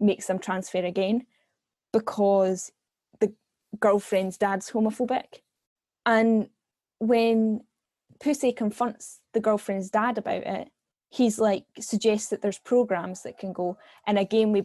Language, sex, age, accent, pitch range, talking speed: English, female, 10-29, British, 185-220 Hz, 125 wpm